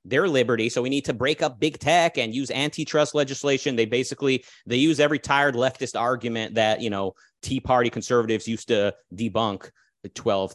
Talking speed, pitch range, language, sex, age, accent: 180 wpm, 130-165 Hz, English, male, 30-49, American